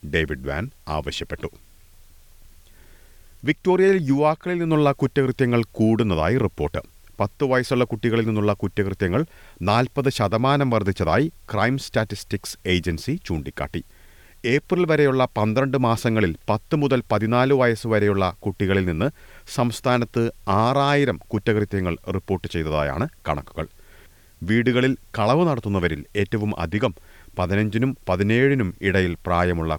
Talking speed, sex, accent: 95 wpm, male, native